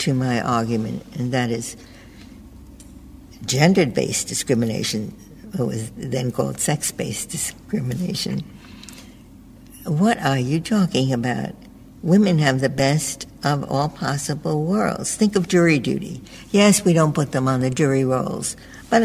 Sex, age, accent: female, 60-79, American